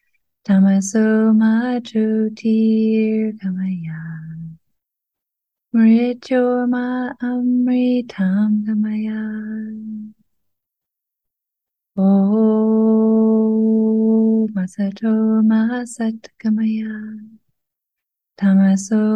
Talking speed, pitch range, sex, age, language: 45 wpm, 215-225 Hz, female, 30-49, English